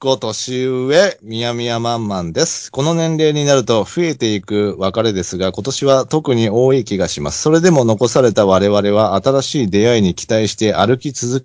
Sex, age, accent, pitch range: male, 40-59, native, 105-140 Hz